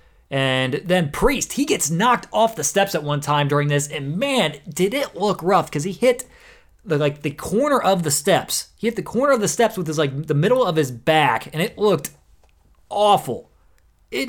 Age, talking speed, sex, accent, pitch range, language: 30-49, 210 wpm, male, American, 135-185 Hz, English